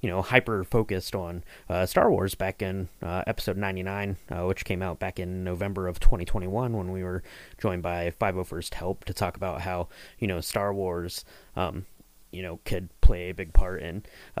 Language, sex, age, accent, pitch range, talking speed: English, male, 20-39, American, 90-100 Hz, 190 wpm